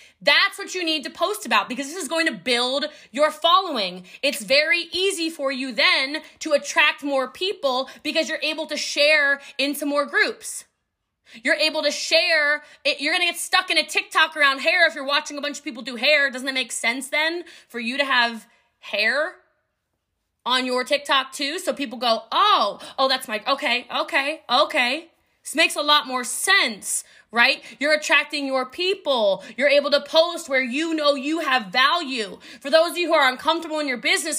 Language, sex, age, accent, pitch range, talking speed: English, female, 20-39, American, 265-330 Hz, 190 wpm